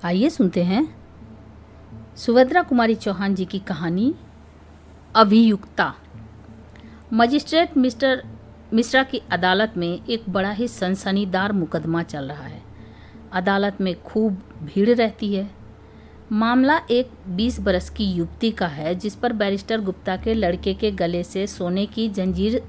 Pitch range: 170-225 Hz